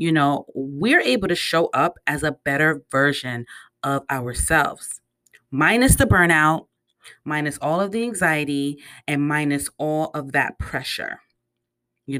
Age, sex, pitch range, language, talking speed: 30-49, female, 145-220 Hz, English, 140 wpm